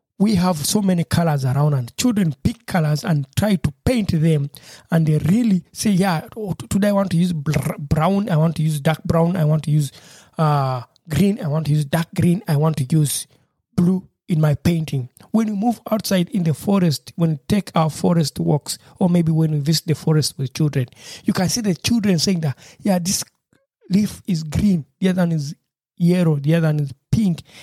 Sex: male